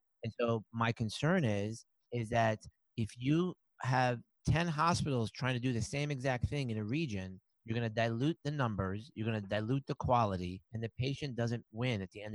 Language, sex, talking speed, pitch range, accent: English, male, 205 wpm, 105-125 Hz, American